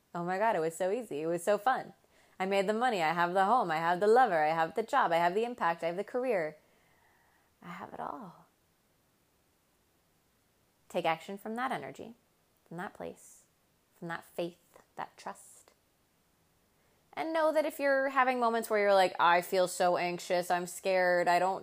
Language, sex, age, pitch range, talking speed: English, female, 20-39, 170-245 Hz, 195 wpm